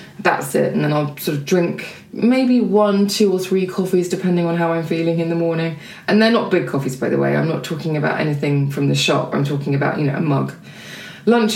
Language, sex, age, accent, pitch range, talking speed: English, female, 20-39, British, 160-210 Hz, 240 wpm